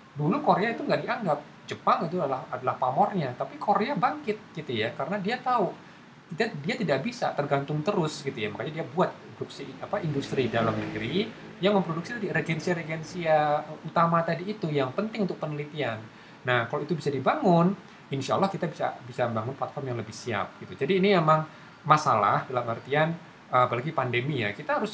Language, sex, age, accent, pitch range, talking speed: Indonesian, male, 20-39, native, 125-180 Hz, 170 wpm